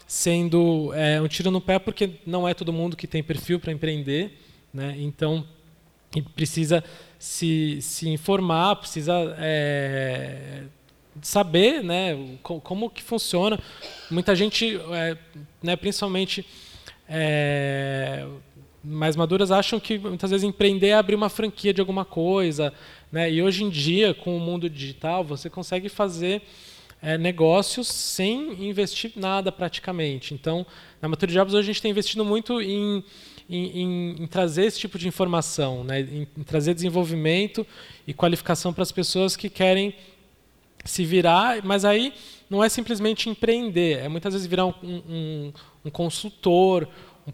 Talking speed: 145 wpm